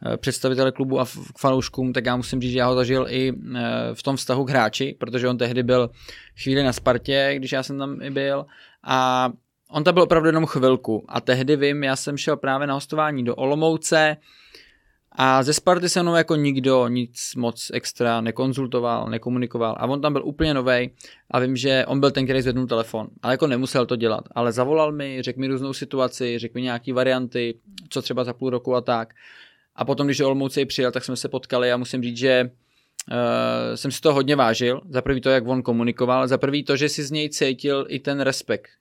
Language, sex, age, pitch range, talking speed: Czech, male, 20-39, 125-140 Hz, 210 wpm